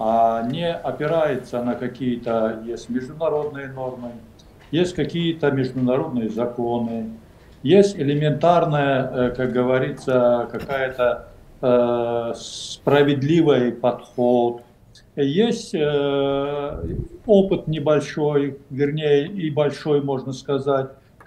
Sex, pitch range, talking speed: male, 120-145 Hz, 80 wpm